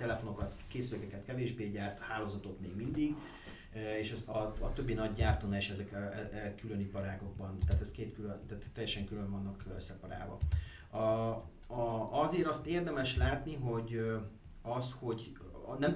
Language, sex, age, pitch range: Hungarian, male, 30-49, 95-110 Hz